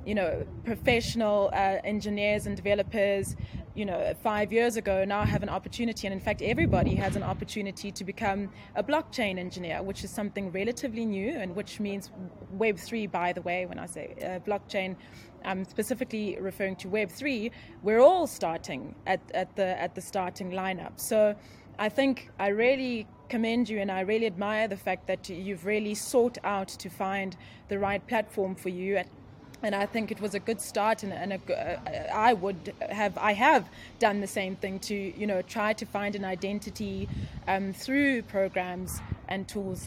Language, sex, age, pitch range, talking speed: English, female, 20-39, 190-220 Hz, 180 wpm